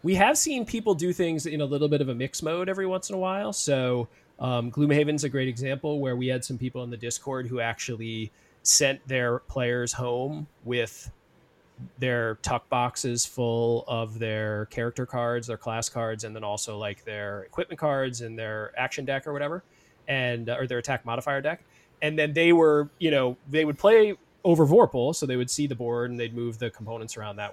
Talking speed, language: 205 wpm, English